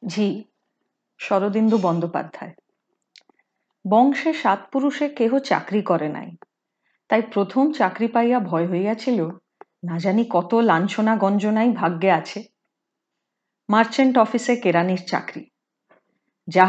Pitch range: 195-265 Hz